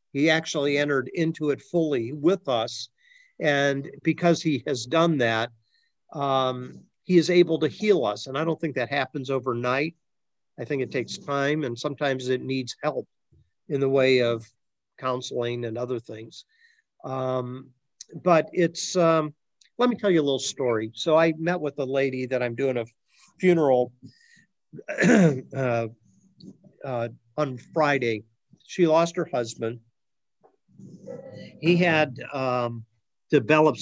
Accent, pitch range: American, 125-160 Hz